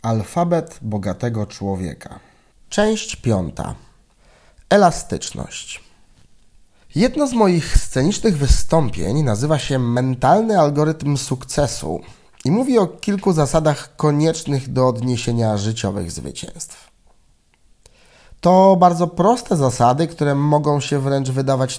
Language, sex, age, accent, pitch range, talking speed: Polish, male, 30-49, native, 120-175 Hz, 95 wpm